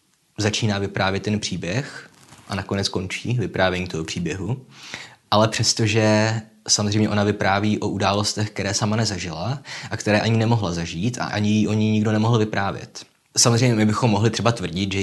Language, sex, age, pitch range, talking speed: Czech, male, 20-39, 95-110 Hz, 155 wpm